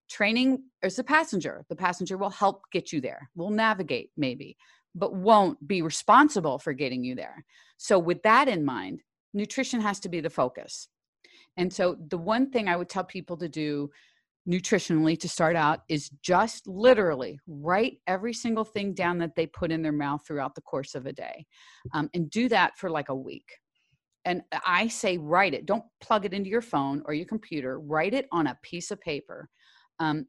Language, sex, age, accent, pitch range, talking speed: English, female, 40-59, American, 155-205 Hz, 195 wpm